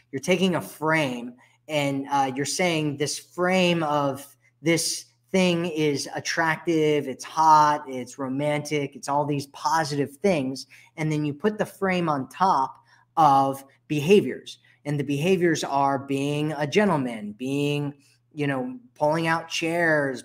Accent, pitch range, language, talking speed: American, 130-155 Hz, English, 140 wpm